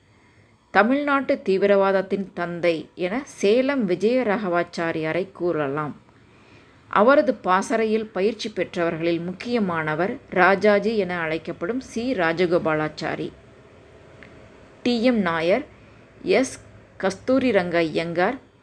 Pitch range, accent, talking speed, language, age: 165-220 Hz, native, 70 wpm, Tamil, 20-39